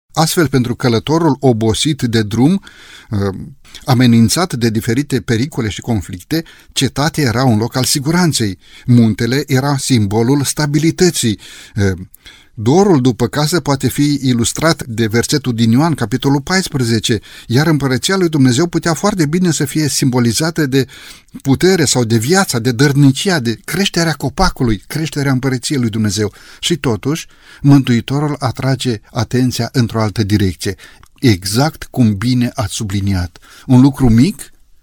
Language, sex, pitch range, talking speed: Romanian, male, 110-150 Hz, 125 wpm